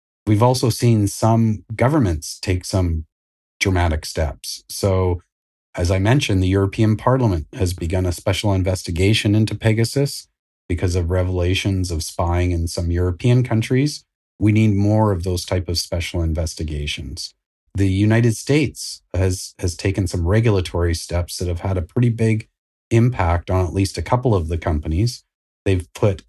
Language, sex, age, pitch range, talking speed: English, male, 30-49, 85-105 Hz, 155 wpm